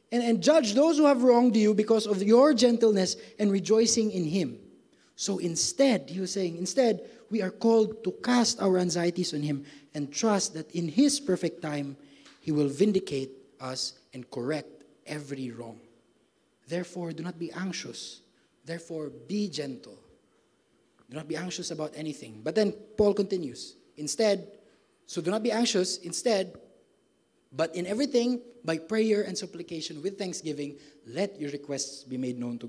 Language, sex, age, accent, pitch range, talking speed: English, male, 20-39, Filipino, 150-215 Hz, 160 wpm